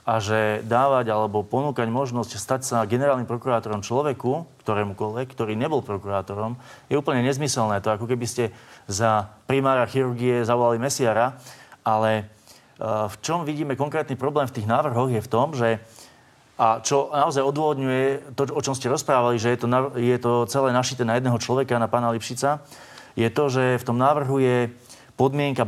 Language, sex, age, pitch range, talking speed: Slovak, male, 30-49, 115-140 Hz, 165 wpm